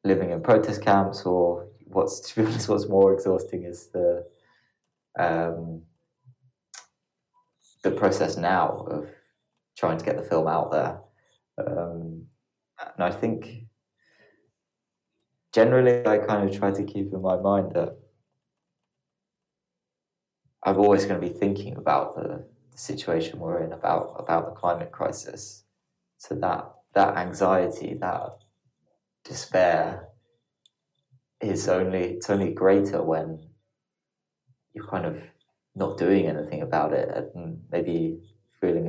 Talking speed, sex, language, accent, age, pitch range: 125 wpm, male, English, British, 20-39, 85-115 Hz